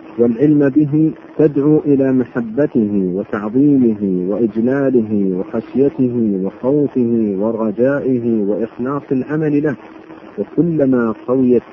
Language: Arabic